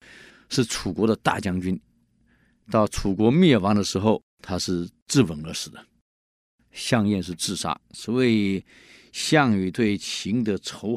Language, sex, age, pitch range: Chinese, male, 50-69, 90-150 Hz